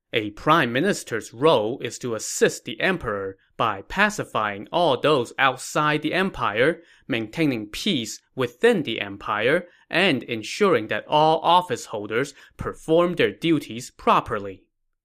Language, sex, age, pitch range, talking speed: English, male, 20-39, 115-170 Hz, 125 wpm